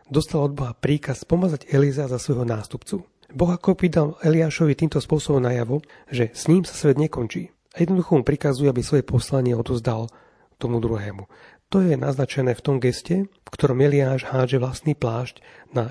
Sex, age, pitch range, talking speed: male, 30-49, 120-150 Hz, 175 wpm